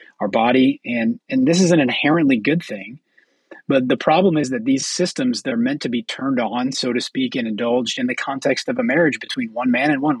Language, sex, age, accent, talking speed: English, male, 30-49, American, 230 wpm